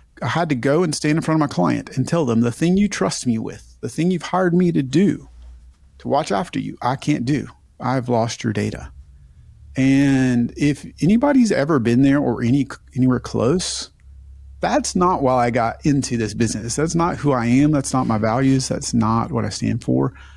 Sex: male